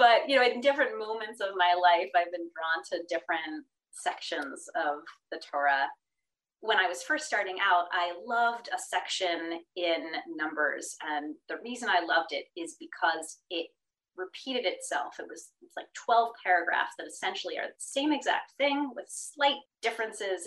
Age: 30-49